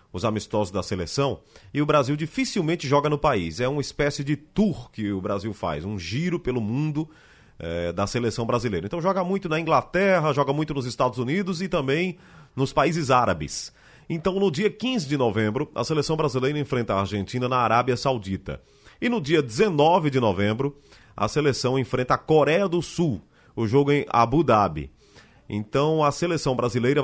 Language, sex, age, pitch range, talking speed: Portuguese, male, 30-49, 110-155 Hz, 175 wpm